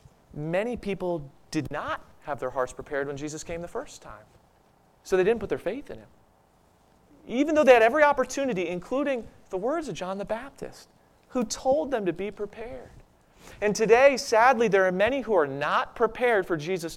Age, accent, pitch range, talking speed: 30-49, American, 170-255 Hz, 185 wpm